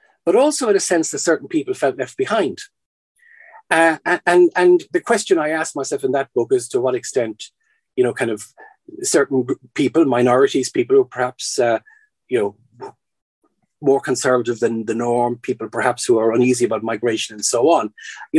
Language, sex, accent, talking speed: English, male, Irish, 185 wpm